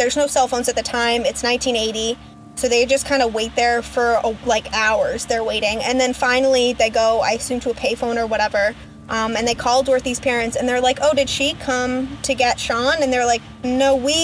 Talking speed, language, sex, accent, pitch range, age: 235 wpm, English, female, American, 235-270 Hz, 10-29